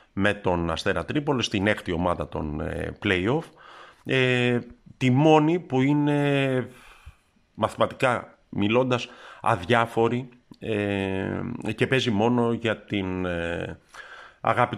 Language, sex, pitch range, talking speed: Greek, male, 90-115 Hz, 100 wpm